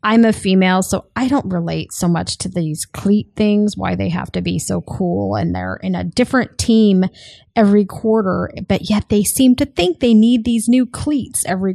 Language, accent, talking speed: English, American, 205 wpm